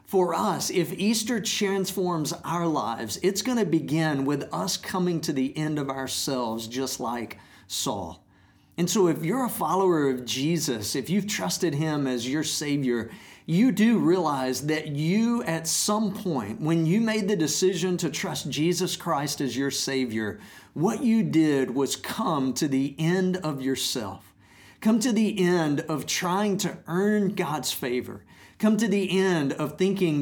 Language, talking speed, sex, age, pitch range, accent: English, 165 wpm, male, 50-69, 130-185 Hz, American